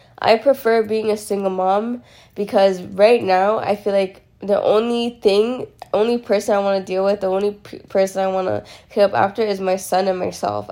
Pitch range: 185-205 Hz